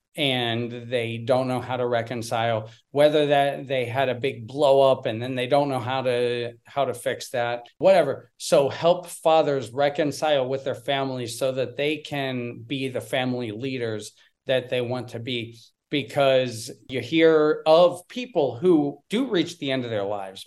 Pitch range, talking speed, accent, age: 115-140 Hz, 175 wpm, American, 40-59